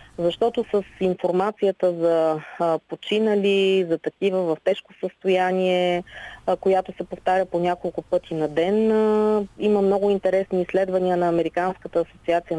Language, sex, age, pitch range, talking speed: Bulgarian, female, 30-49, 165-195 Hz, 120 wpm